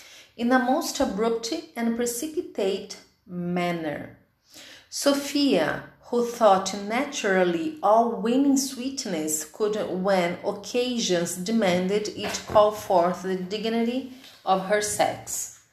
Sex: female